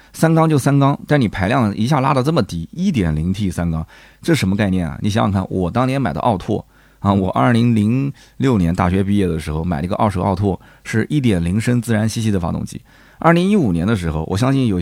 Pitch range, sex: 95-130 Hz, male